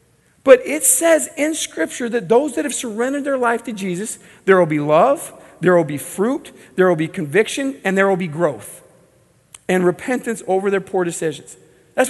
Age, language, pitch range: 40-59, English, 165-240 Hz